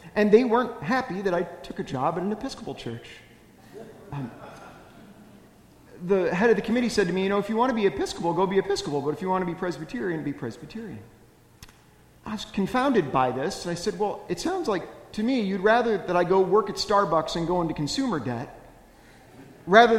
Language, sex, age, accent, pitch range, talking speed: English, male, 40-59, American, 155-205 Hz, 210 wpm